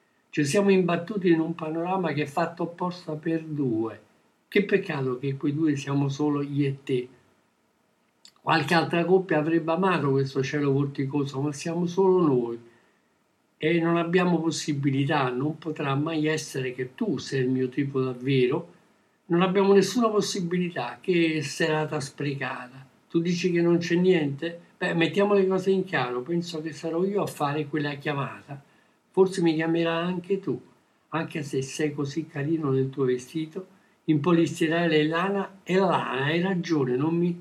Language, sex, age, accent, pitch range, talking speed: Italian, male, 60-79, native, 140-180 Hz, 155 wpm